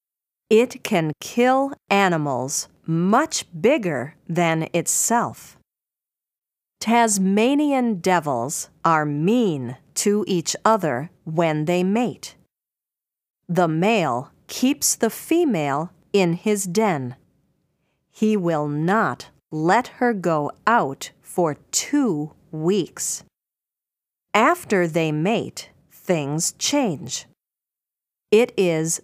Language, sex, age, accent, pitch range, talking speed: English, female, 40-59, American, 160-225 Hz, 90 wpm